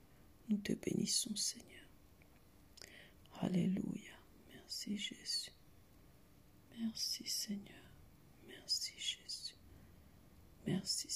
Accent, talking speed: French, 65 wpm